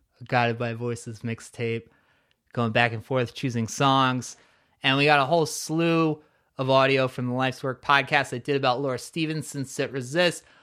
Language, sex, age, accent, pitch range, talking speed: English, male, 30-49, American, 125-145 Hz, 170 wpm